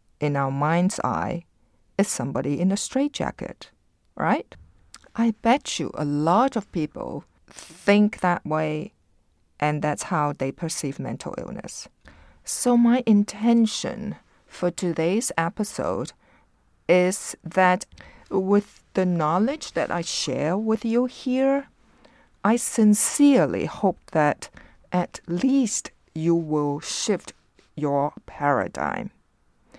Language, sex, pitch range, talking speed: English, female, 145-205 Hz, 110 wpm